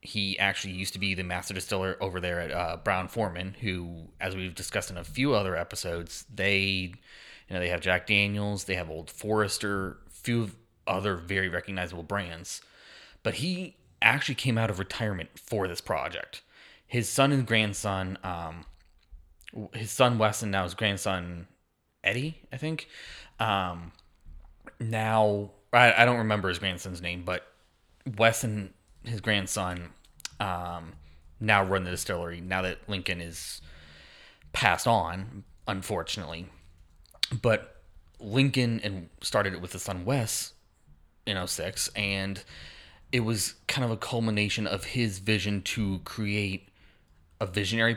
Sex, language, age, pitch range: male, English, 20-39, 85-110 Hz